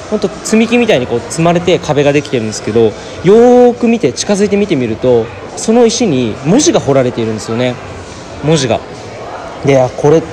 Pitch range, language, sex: 115-180 Hz, Japanese, male